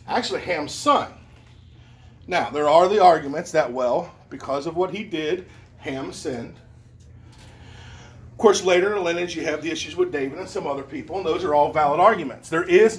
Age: 40-59